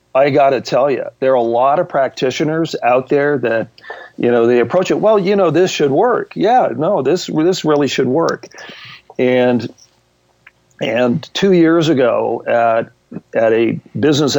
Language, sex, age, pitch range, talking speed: English, male, 50-69, 115-155 Hz, 165 wpm